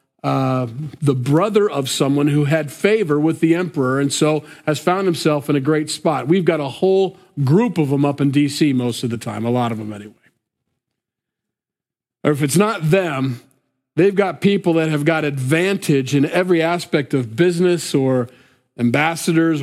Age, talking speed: 40-59, 175 wpm